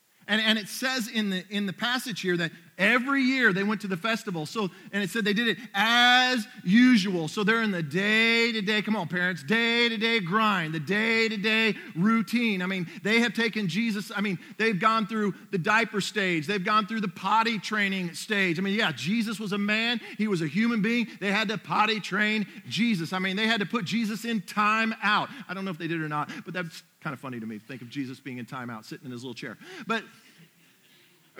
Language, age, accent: English, 40-59, American